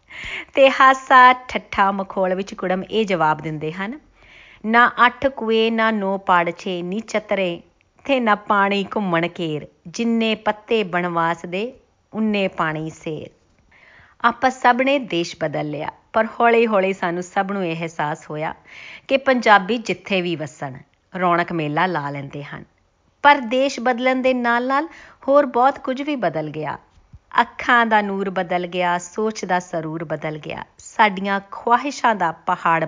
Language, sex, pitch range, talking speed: Punjabi, female, 170-235 Hz, 145 wpm